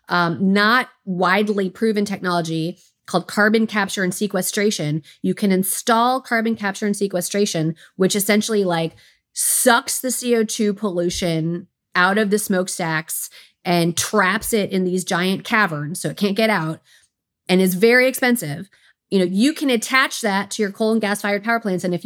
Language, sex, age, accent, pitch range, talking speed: English, female, 30-49, American, 185-225 Hz, 160 wpm